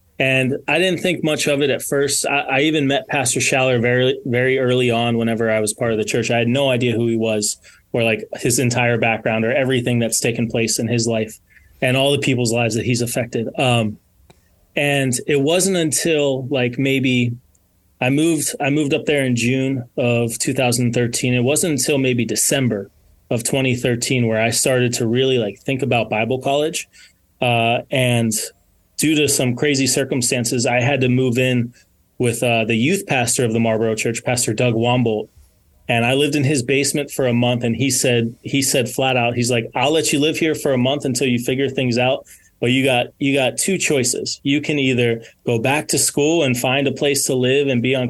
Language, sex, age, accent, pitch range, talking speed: English, male, 20-39, American, 120-140 Hz, 205 wpm